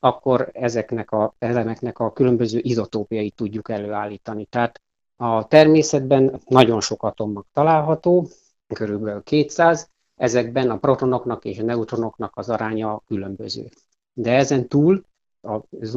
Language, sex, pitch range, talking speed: Hungarian, male, 110-135 Hz, 115 wpm